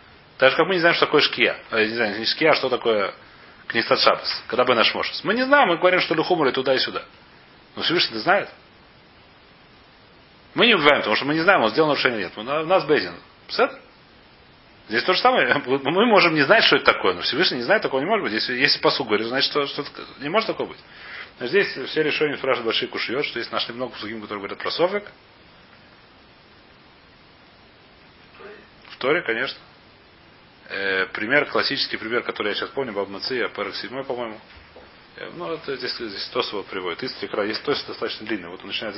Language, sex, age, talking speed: Russian, male, 40-59, 190 wpm